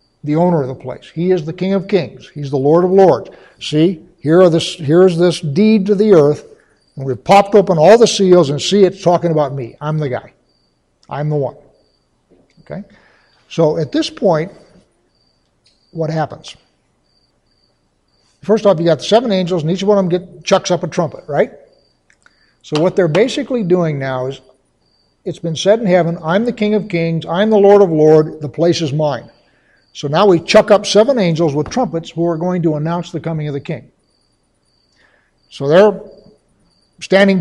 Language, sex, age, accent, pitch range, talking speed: English, male, 60-79, American, 155-195 Hz, 185 wpm